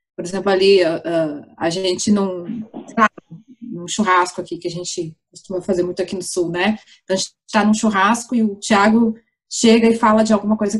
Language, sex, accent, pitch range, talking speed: Portuguese, female, Brazilian, 205-255 Hz, 200 wpm